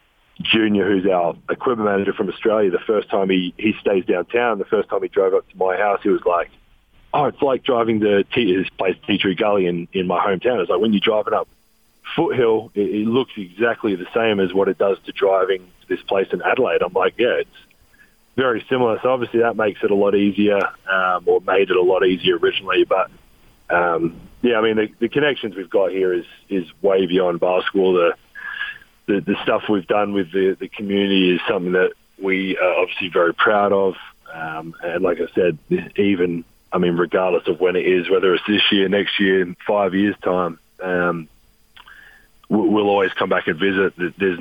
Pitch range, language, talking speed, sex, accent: 95-125 Hz, English, 205 wpm, male, Australian